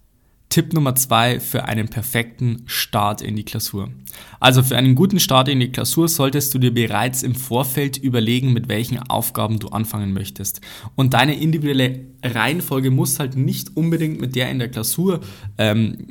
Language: German